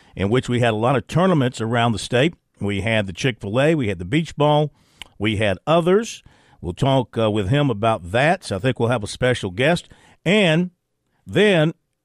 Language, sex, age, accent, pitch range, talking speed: English, male, 50-69, American, 115-155 Hz, 200 wpm